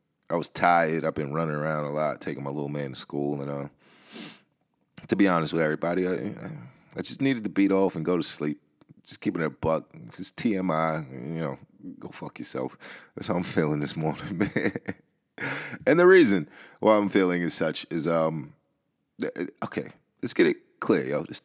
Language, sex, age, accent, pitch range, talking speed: English, male, 30-49, American, 80-110 Hz, 195 wpm